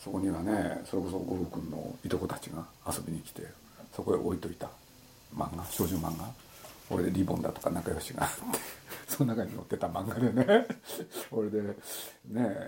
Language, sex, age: Japanese, male, 50-69